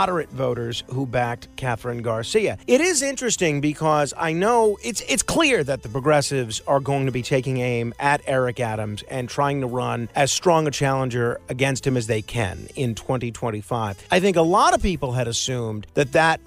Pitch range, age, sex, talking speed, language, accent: 125-165 Hz, 40-59, male, 190 wpm, English, American